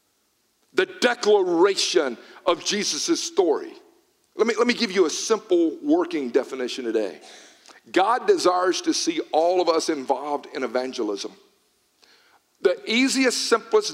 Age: 50-69